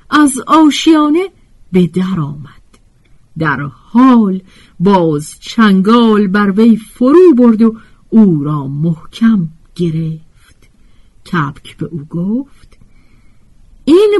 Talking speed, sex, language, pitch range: 95 wpm, female, Persian, 155-235 Hz